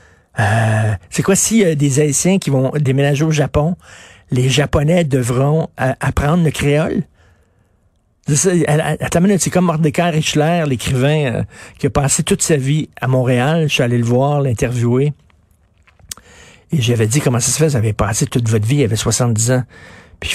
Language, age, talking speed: French, 50-69, 190 wpm